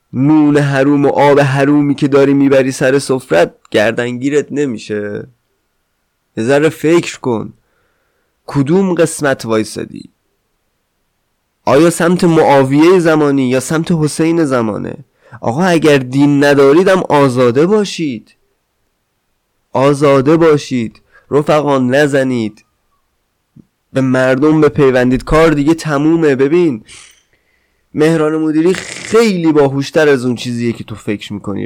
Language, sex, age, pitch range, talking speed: Persian, male, 20-39, 130-155 Hz, 110 wpm